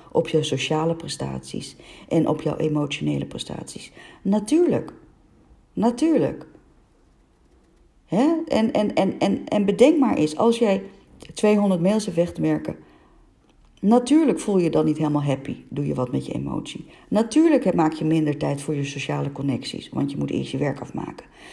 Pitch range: 140-185 Hz